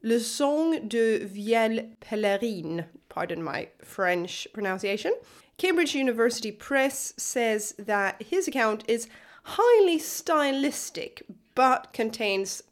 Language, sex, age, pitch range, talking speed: English, female, 30-49, 195-265 Hz, 100 wpm